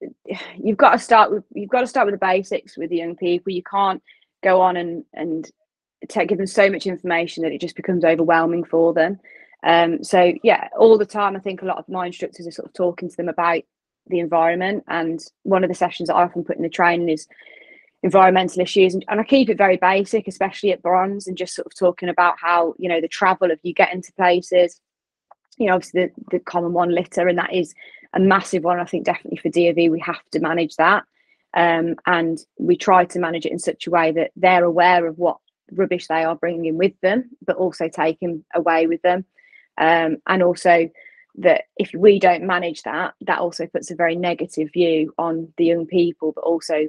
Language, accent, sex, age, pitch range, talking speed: English, British, female, 20-39, 170-190 Hz, 220 wpm